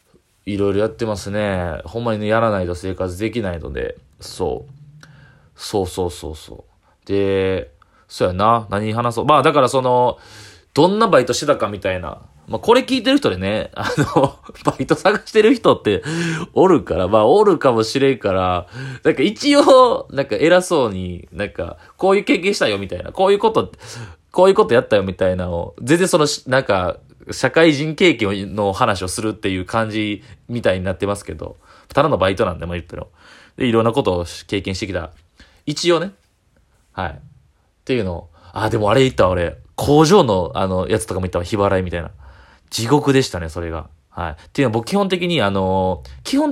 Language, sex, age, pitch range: Japanese, male, 20-39, 90-140 Hz